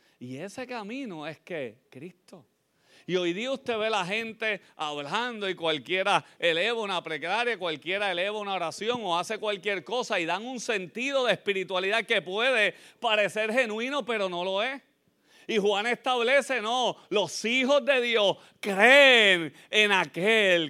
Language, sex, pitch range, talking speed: Spanish, male, 170-215 Hz, 150 wpm